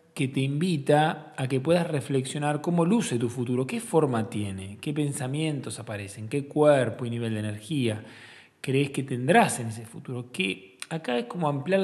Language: Spanish